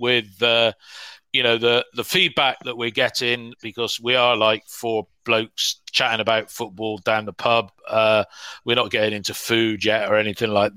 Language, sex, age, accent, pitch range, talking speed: English, male, 40-59, British, 110-130 Hz, 180 wpm